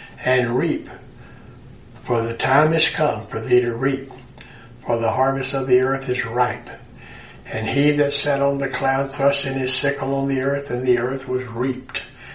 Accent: American